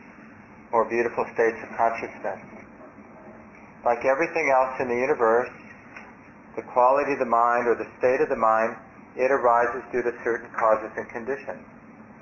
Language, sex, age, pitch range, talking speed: English, male, 40-59, 115-125 Hz, 145 wpm